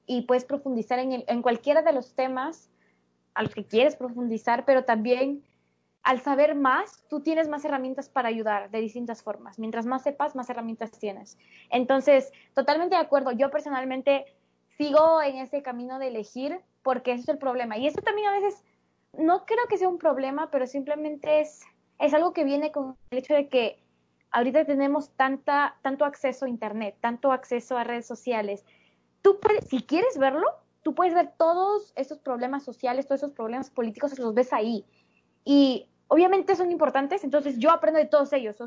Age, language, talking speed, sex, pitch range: 20-39, Spanish, 180 wpm, female, 245-305 Hz